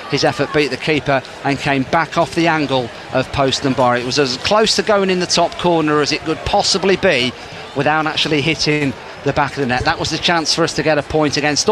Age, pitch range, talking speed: 40-59, 135-185 Hz, 250 wpm